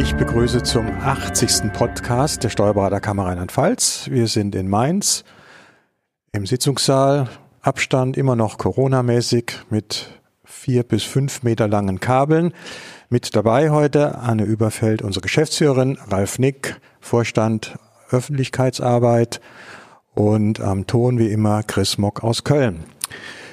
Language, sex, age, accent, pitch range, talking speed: German, male, 40-59, German, 110-140 Hz, 115 wpm